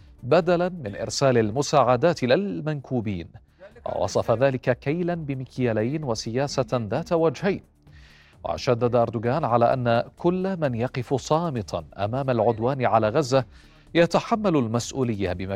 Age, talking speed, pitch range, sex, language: 40-59, 105 wpm, 115-140 Hz, male, Arabic